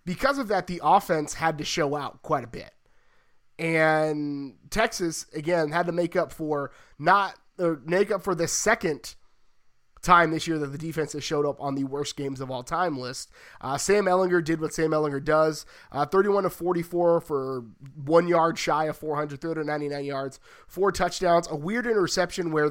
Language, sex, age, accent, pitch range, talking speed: English, male, 30-49, American, 140-170 Hz, 185 wpm